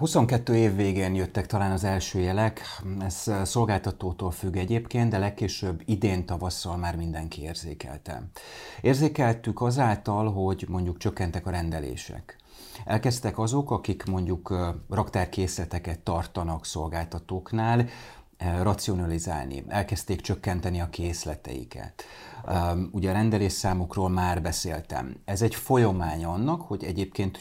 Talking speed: 105 wpm